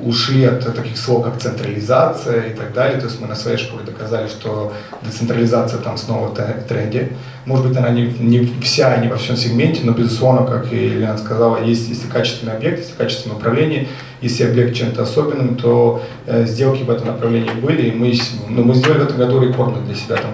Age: 30-49